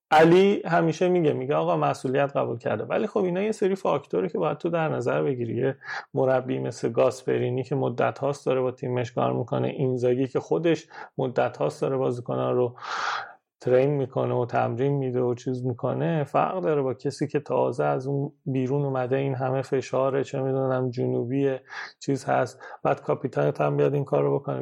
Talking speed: 185 wpm